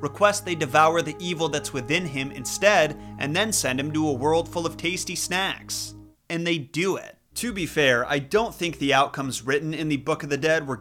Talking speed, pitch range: 220 wpm, 130-160 Hz